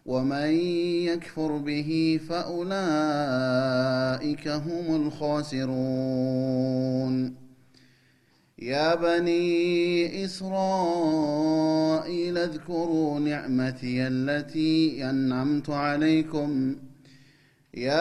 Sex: male